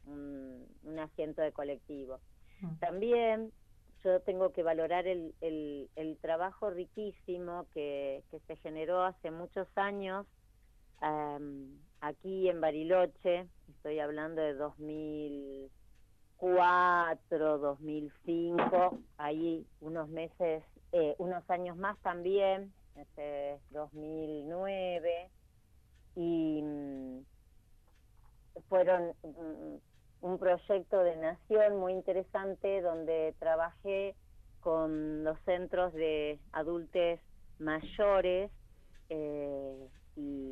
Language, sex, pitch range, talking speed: Spanish, female, 145-175 Hz, 90 wpm